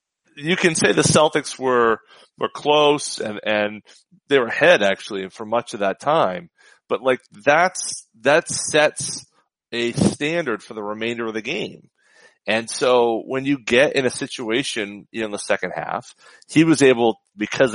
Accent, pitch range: American, 110-145 Hz